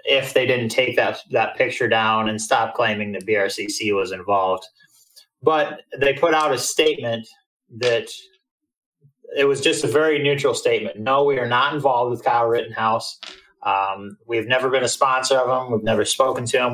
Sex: male